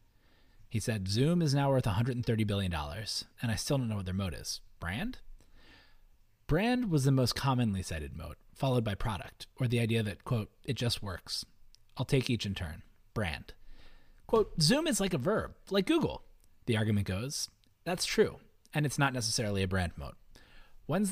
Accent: American